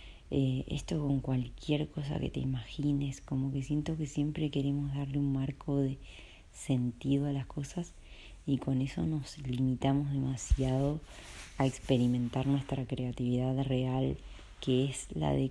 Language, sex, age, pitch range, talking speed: Spanish, female, 30-49, 125-145 Hz, 145 wpm